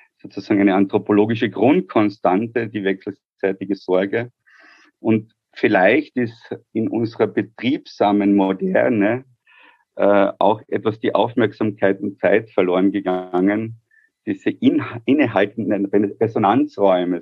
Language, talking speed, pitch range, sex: German, 90 wpm, 95-115 Hz, male